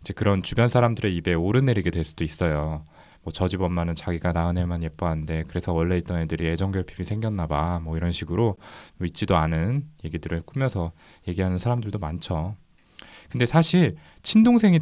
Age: 20-39